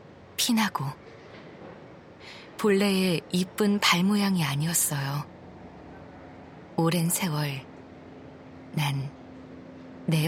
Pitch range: 145-185 Hz